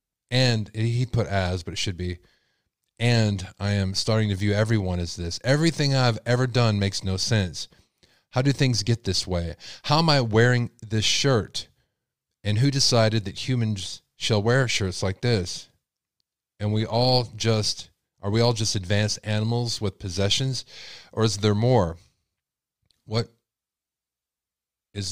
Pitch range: 100-120 Hz